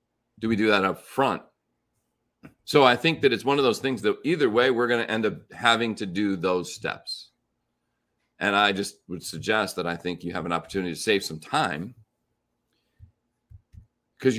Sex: male